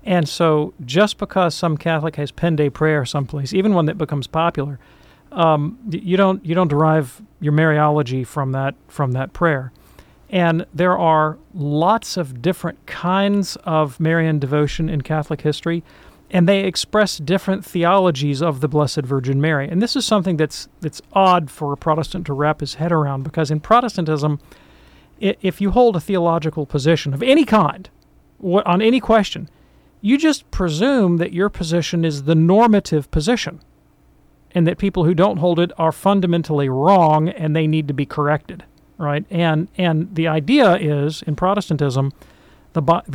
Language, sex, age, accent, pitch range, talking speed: English, male, 40-59, American, 150-190 Hz, 165 wpm